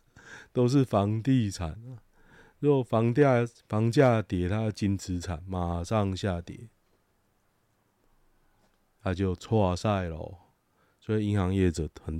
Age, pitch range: 20-39, 90-110 Hz